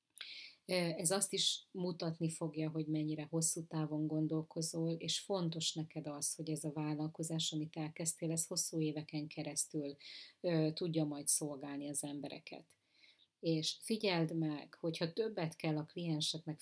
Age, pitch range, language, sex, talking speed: 30-49, 150-165 Hz, Hungarian, female, 135 wpm